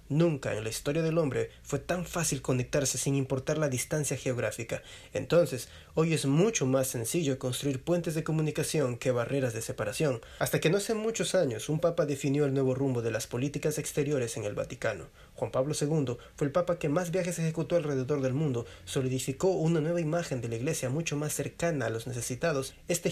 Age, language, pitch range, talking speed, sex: 30-49, Spanish, 130-160 Hz, 195 wpm, male